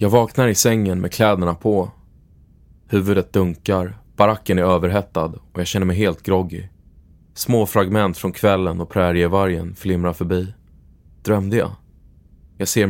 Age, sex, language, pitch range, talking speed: 20-39, male, Swedish, 85-100 Hz, 140 wpm